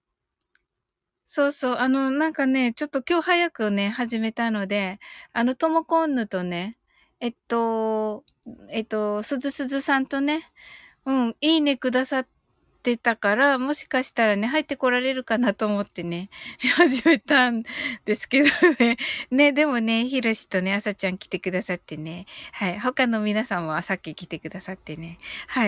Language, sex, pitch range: Japanese, female, 195-270 Hz